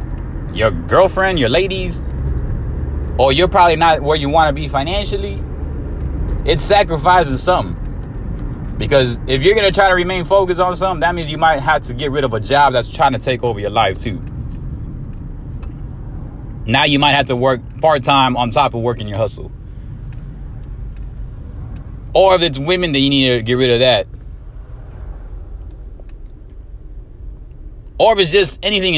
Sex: male